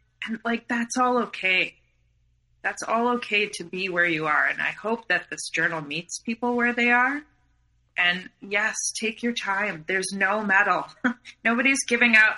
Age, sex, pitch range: 30-49, female, 150-225 Hz